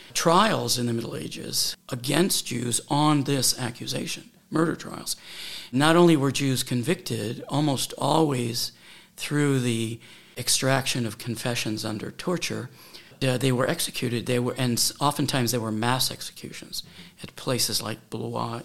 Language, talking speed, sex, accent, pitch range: Czech, 130 wpm, male, American, 115-145 Hz